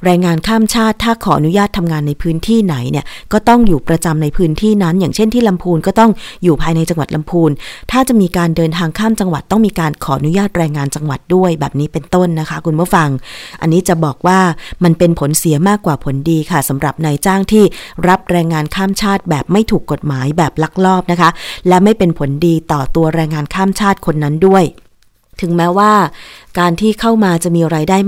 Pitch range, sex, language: 155-190 Hz, female, Thai